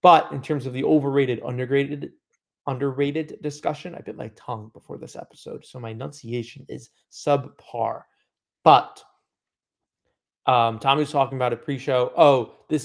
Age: 30-49